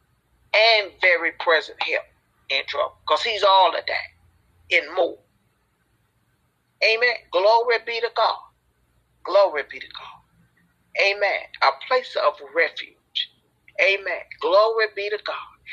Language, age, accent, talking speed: English, 40-59, American, 120 wpm